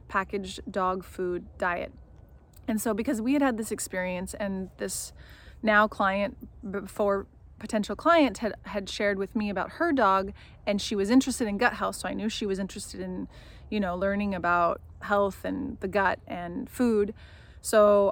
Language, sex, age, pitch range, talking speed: English, female, 20-39, 185-215 Hz, 170 wpm